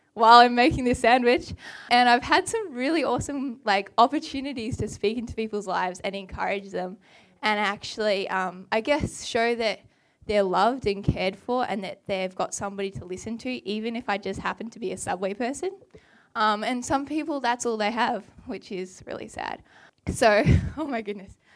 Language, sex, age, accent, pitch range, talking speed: English, female, 10-29, Australian, 200-250 Hz, 185 wpm